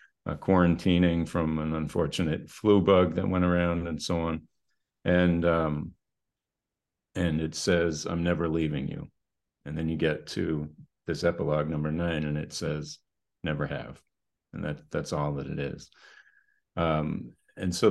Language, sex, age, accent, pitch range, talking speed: English, male, 40-59, American, 80-95 Hz, 150 wpm